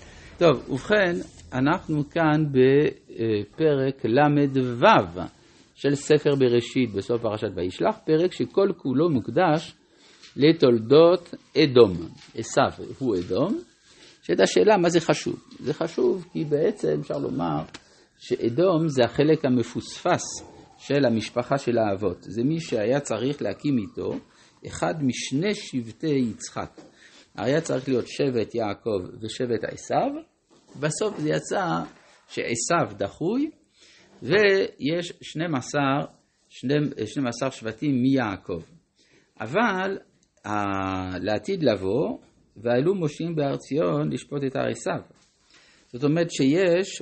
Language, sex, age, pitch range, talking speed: Hebrew, male, 50-69, 120-165 Hz, 105 wpm